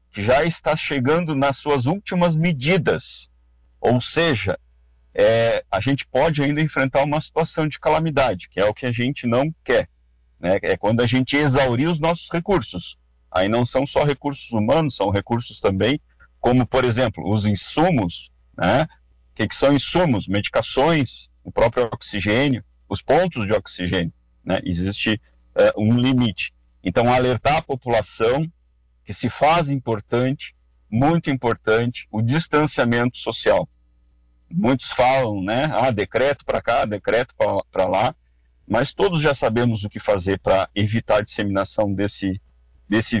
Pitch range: 95-145 Hz